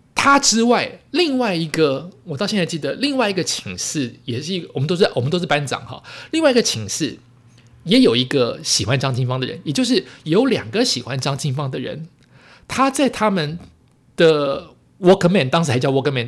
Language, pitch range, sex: Chinese, 125-210 Hz, male